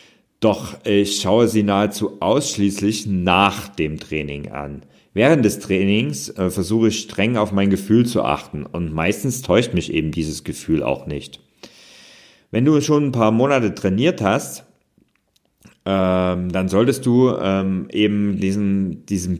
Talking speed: 145 wpm